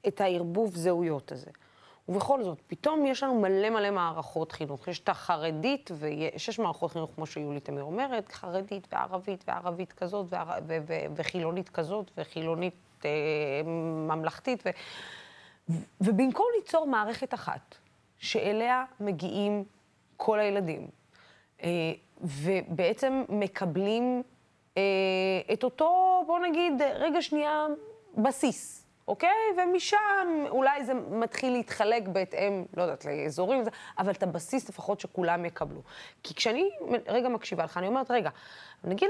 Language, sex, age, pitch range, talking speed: Hebrew, female, 20-39, 170-255 Hz, 120 wpm